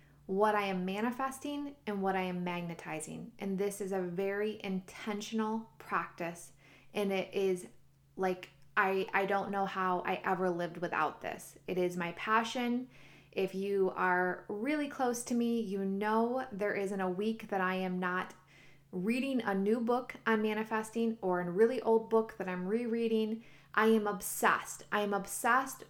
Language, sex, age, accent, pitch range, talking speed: English, female, 20-39, American, 185-225 Hz, 165 wpm